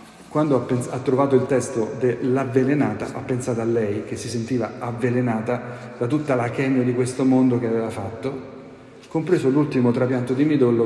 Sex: male